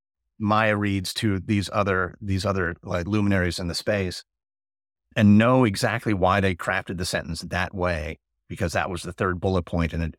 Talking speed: 185 wpm